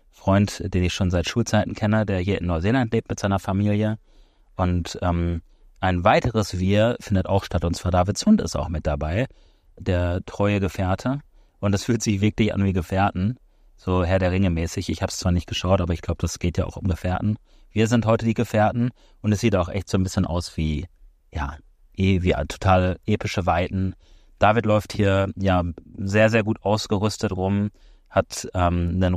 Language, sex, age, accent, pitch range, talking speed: German, male, 30-49, German, 90-105 Hz, 195 wpm